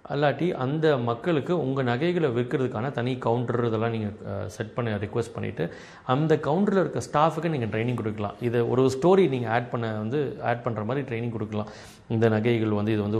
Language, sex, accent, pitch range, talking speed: Tamil, male, native, 110-150 Hz, 175 wpm